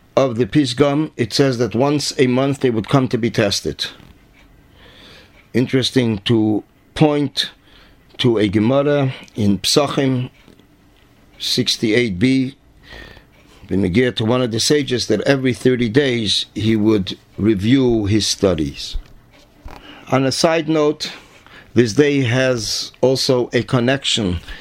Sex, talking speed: male, 120 wpm